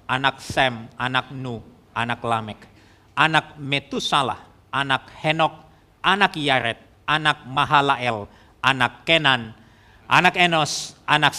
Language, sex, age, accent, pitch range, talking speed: Indonesian, male, 50-69, native, 110-155 Hz, 100 wpm